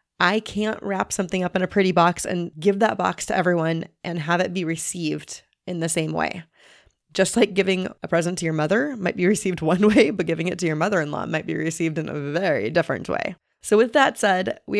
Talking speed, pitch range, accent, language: 225 wpm, 175-215 Hz, American, English